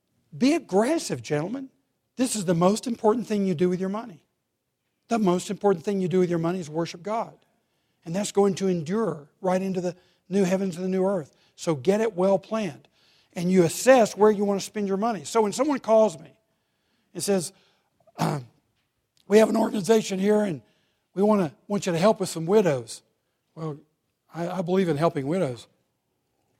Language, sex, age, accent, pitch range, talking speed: English, male, 60-79, American, 165-205 Hz, 195 wpm